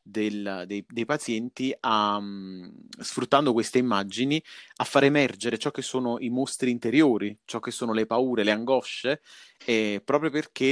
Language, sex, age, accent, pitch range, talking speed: Italian, male, 30-49, native, 100-120 Hz, 155 wpm